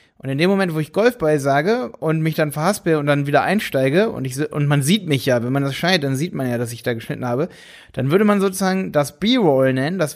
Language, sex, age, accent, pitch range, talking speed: German, male, 30-49, German, 145-195 Hz, 255 wpm